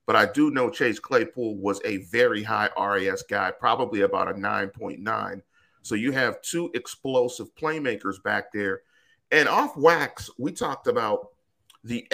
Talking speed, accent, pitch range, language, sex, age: 155 wpm, American, 105-140 Hz, English, male, 40-59